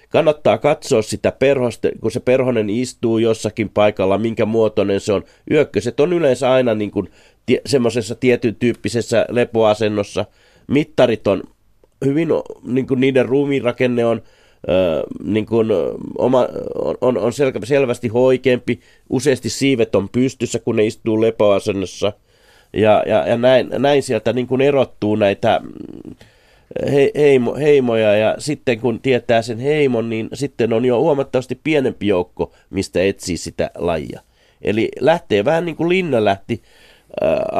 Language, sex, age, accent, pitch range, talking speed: Finnish, male, 30-49, native, 105-130 Hz, 135 wpm